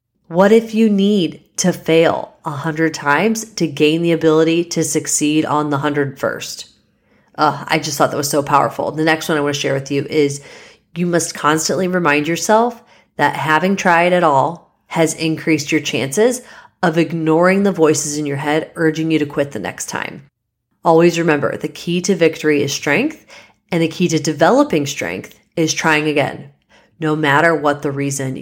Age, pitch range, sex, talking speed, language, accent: 30-49, 155-185 Hz, female, 180 wpm, English, American